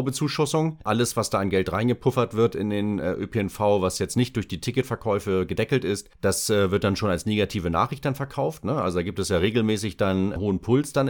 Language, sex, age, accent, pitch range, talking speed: English, male, 30-49, German, 95-120 Hz, 205 wpm